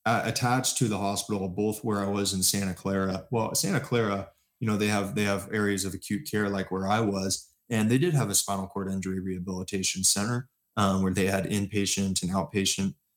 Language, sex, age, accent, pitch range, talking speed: English, male, 20-39, American, 95-110 Hz, 205 wpm